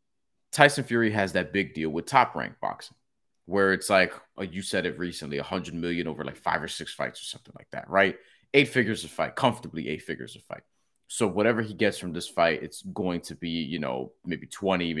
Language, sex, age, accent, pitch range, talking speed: English, male, 30-49, American, 75-95 Hz, 215 wpm